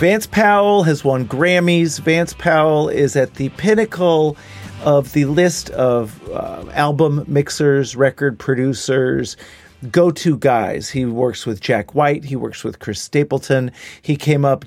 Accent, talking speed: American, 145 wpm